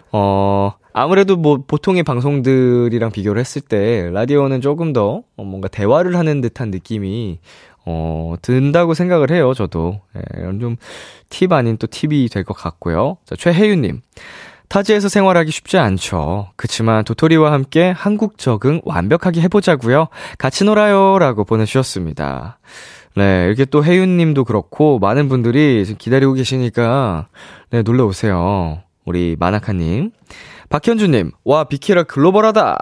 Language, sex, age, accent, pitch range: Korean, male, 20-39, native, 105-170 Hz